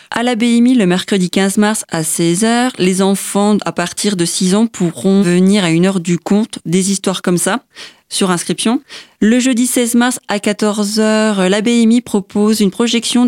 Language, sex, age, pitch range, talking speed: French, female, 20-39, 190-225 Hz, 180 wpm